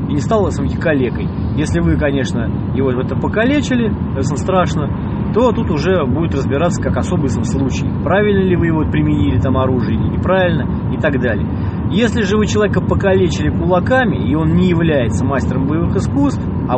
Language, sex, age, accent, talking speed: Russian, male, 20-39, native, 175 wpm